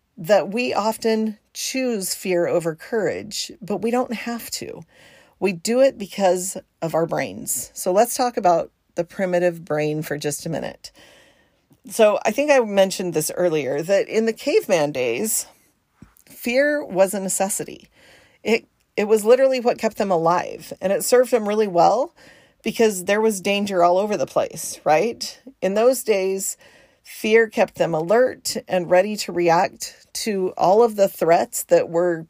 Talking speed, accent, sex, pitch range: 160 wpm, American, female, 175-225 Hz